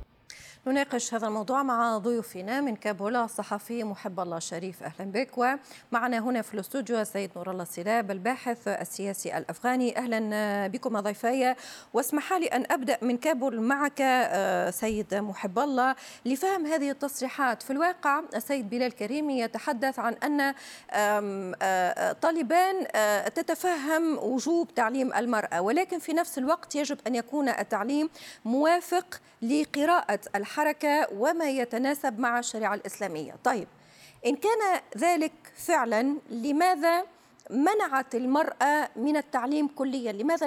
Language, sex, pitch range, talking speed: Arabic, female, 220-295 Hz, 120 wpm